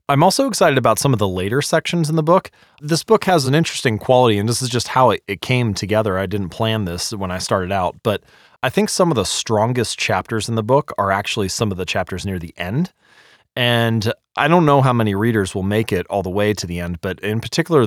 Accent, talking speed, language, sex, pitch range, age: American, 250 wpm, English, male, 95-125 Hz, 30-49